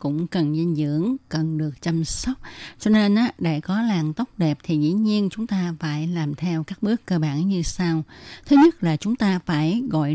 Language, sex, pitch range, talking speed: Vietnamese, female, 155-200 Hz, 220 wpm